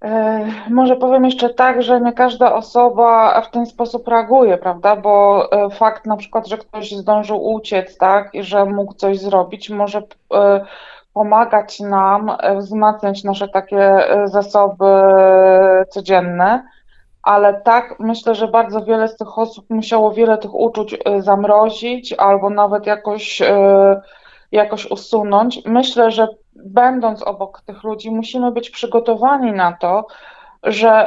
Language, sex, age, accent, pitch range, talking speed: Polish, female, 20-39, native, 200-235 Hz, 125 wpm